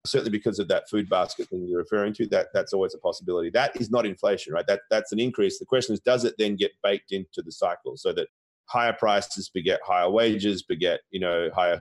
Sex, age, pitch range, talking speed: male, 30-49, 100-135 Hz, 235 wpm